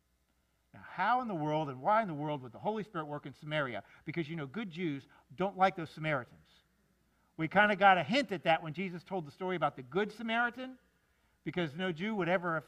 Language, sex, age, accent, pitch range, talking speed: English, male, 50-69, American, 155-210 Hz, 225 wpm